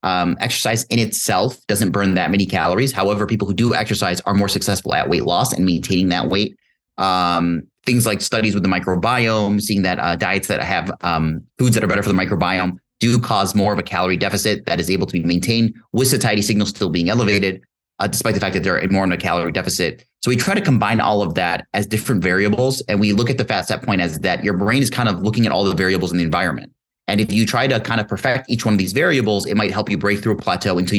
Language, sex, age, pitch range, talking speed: English, male, 30-49, 95-115 Hz, 255 wpm